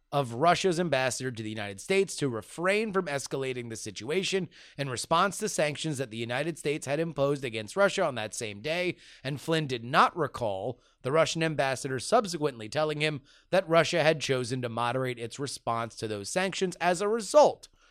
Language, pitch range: English, 125-175 Hz